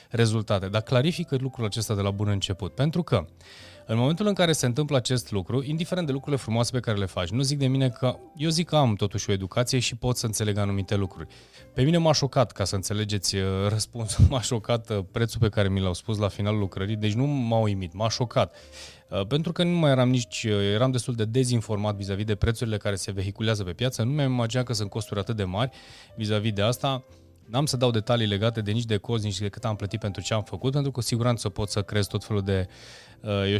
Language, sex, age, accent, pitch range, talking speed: Romanian, male, 20-39, native, 105-135 Hz, 230 wpm